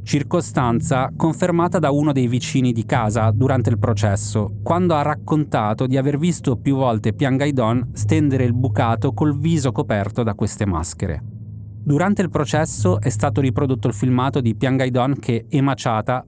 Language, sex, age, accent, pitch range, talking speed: Italian, male, 30-49, native, 110-140 Hz, 150 wpm